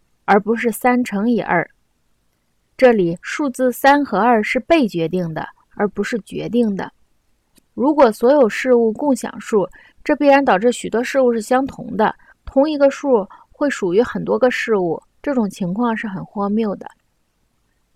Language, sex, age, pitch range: Chinese, female, 20-39, 200-260 Hz